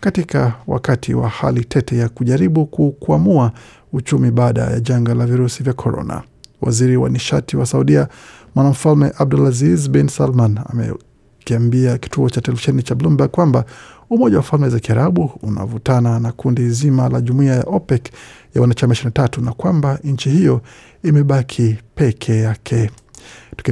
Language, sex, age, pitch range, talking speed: Swahili, male, 50-69, 120-140 Hz, 140 wpm